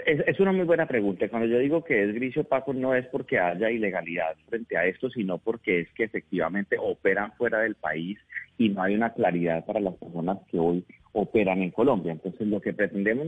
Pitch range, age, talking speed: 90-125 Hz, 30-49, 210 wpm